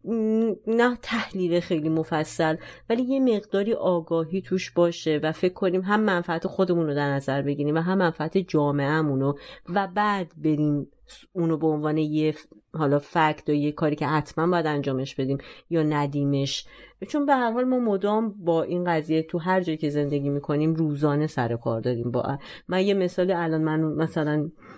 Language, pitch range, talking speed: Persian, 145-185 Hz, 170 wpm